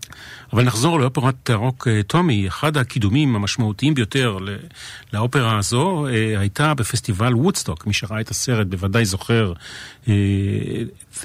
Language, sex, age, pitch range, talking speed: Hebrew, male, 40-59, 105-130 Hz, 110 wpm